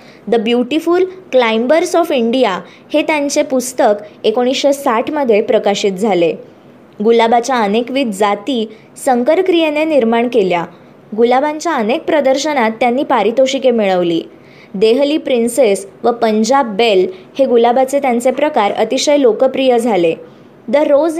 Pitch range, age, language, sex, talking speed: 225-285 Hz, 20-39, Marathi, male, 110 wpm